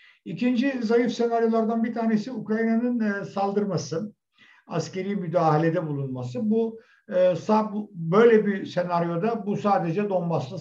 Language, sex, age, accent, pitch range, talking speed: Turkish, male, 60-79, native, 150-205 Hz, 95 wpm